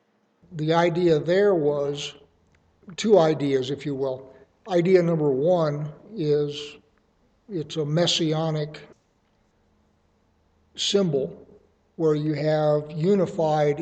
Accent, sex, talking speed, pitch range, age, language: American, male, 90 wpm, 145-165 Hz, 60-79, English